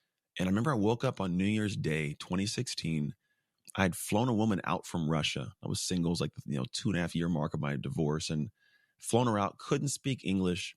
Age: 30-49